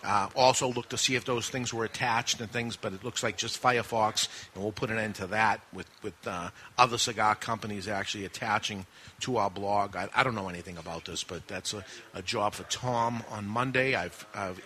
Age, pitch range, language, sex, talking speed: 40-59, 110-140 Hz, English, male, 220 wpm